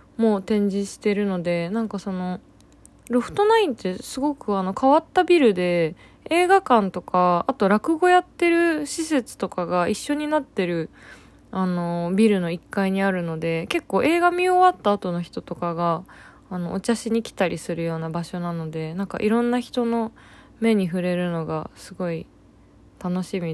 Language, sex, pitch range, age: Japanese, female, 175-250 Hz, 20-39